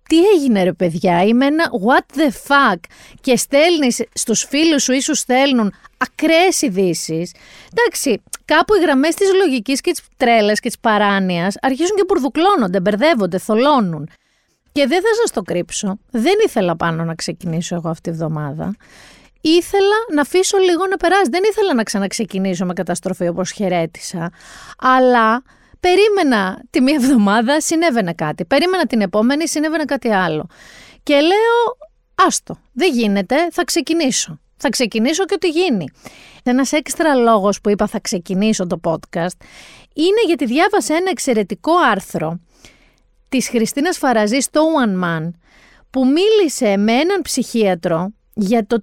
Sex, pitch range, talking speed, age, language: female, 195-320 Hz, 145 wpm, 30-49, Greek